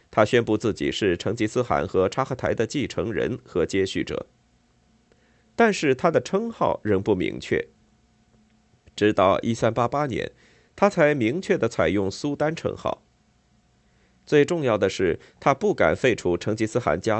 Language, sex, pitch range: Chinese, male, 95-135 Hz